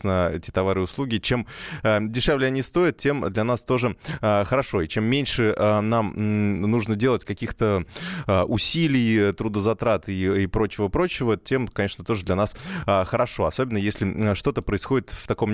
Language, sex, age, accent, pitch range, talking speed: Russian, male, 20-39, native, 100-130 Hz, 170 wpm